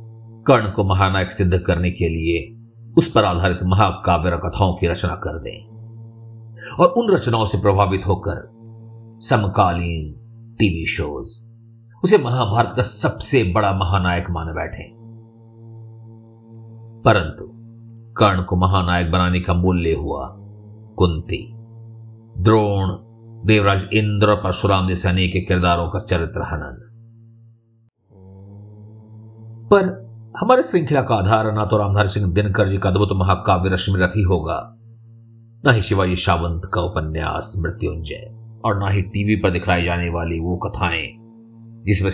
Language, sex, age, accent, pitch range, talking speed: Hindi, male, 50-69, native, 90-115 Hz, 125 wpm